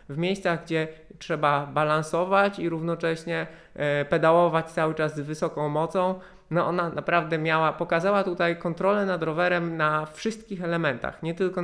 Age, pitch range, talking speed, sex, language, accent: 20-39, 140-170 Hz, 135 wpm, male, Polish, native